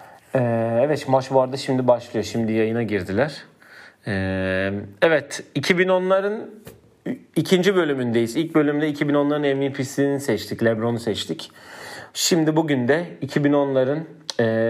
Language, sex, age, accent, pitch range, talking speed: Turkish, male, 40-59, native, 115-150 Hz, 95 wpm